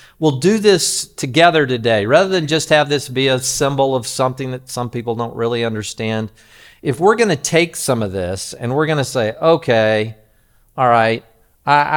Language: English